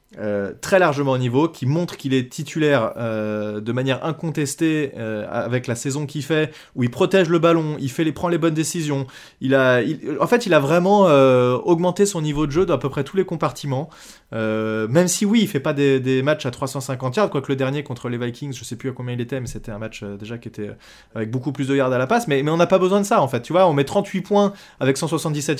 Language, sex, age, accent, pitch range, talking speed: French, male, 20-39, French, 125-160 Hz, 265 wpm